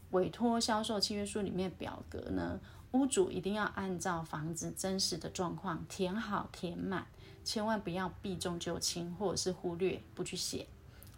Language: Chinese